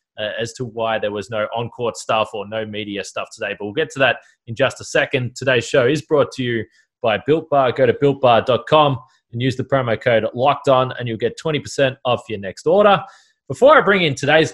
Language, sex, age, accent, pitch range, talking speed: English, male, 20-39, Australian, 115-145 Hz, 225 wpm